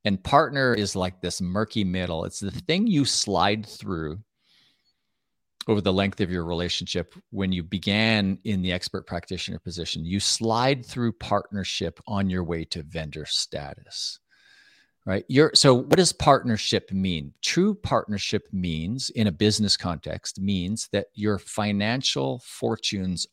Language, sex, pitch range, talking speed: English, male, 90-120 Hz, 140 wpm